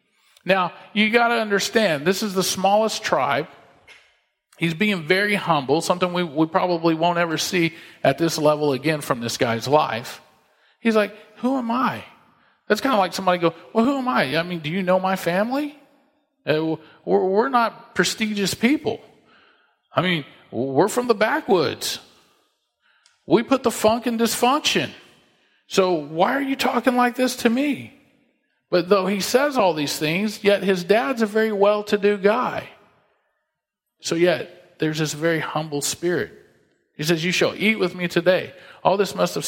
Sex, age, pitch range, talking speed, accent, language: male, 40-59, 155-215 Hz, 165 wpm, American, English